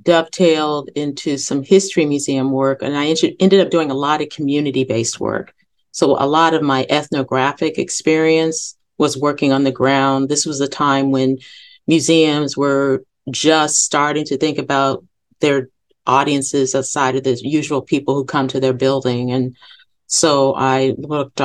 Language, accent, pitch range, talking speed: English, American, 130-145 Hz, 160 wpm